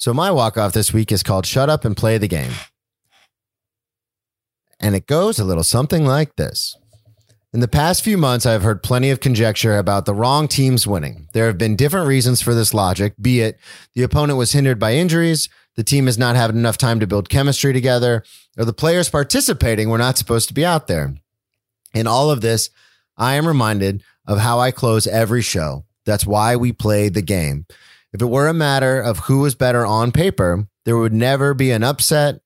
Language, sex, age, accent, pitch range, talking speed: English, male, 30-49, American, 110-135 Hz, 205 wpm